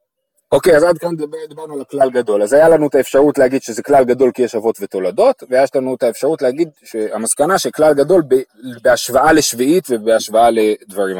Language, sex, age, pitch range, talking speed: Hebrew, male, 30-49, 130-185 Hz, 180 wpm